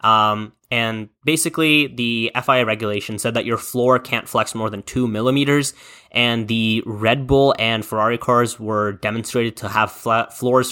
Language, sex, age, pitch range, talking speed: English, male, 10-29, 110-135 Hz, 155 wpm